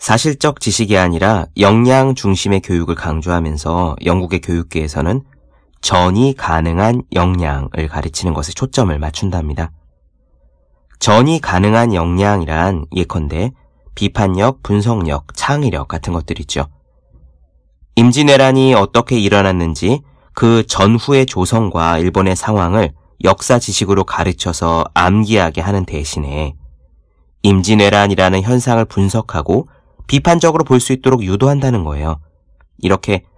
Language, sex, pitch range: Korean, male, 80-120 Hz